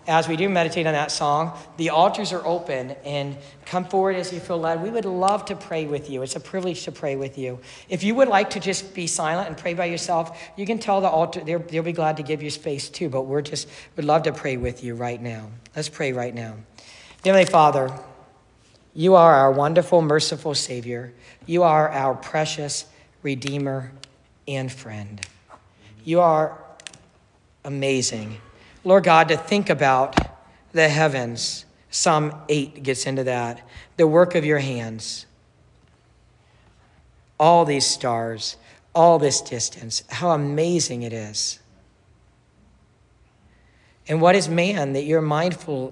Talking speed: 160 wpm